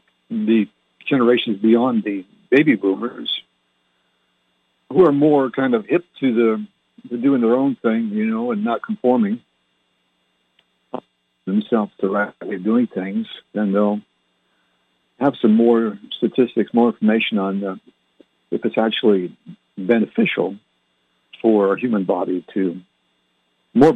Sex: male